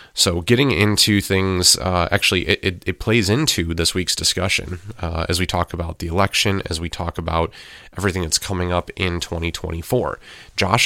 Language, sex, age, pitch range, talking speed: English, male, 30-49, 85-100 Hz, 175 wpm